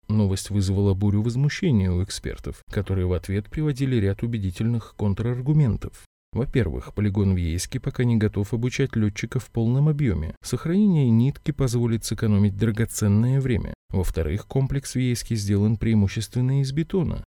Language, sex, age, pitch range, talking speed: Russian, male, 20-39, 95-130 Hz, 130 wpm